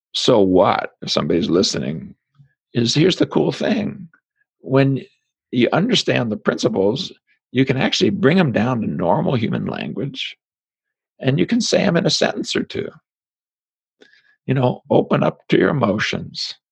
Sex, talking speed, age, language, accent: male, 150 wpm, 60-79, English, American